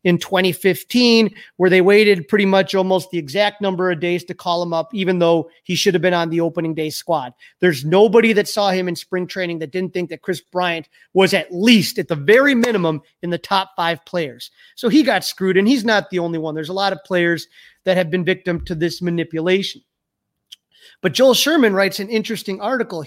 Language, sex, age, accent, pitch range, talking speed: English, male, 30-49, American, 175-230 Hz, 215 wpm